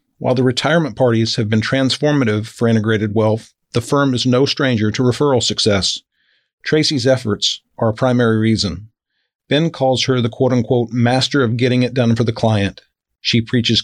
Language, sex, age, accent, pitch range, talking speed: English, male, 50-69, American, 115-135 Hz, 175 wpm